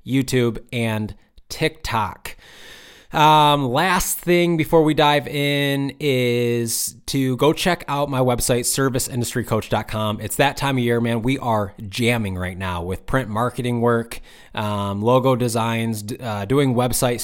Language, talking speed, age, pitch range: English, 135 wpm, 20-39, 115-140 Hz